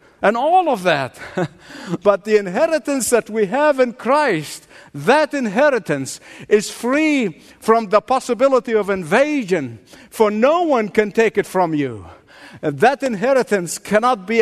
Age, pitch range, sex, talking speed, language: 50-69, 170-240 Hz, male, 135 wpm, English